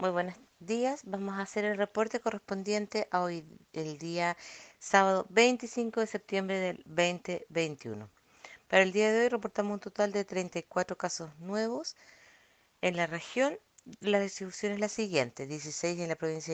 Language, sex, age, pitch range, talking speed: Spanish, female, 50-69, 170-215 Hz, 155 wpm